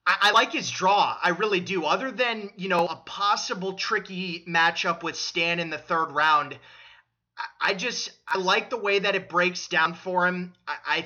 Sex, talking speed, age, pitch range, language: male, 185 wpm, 30-49, 160-205 Hz, English